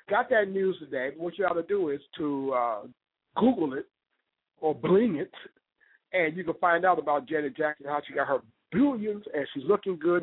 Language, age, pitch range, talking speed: English, 50-69, 160-220 Hz, 200 wpm